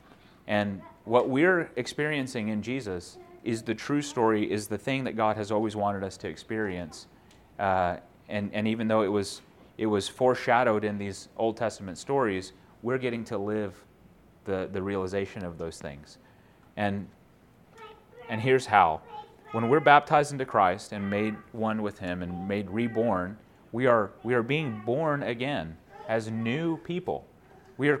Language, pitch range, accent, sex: English, 100-125 Hz, American, male